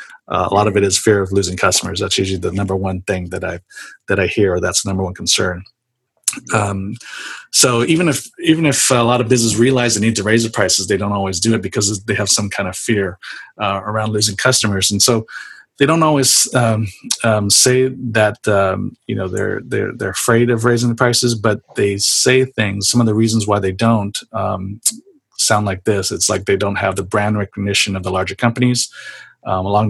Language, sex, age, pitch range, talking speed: English, male, 40-59, 100-120 Hz, 215 wpm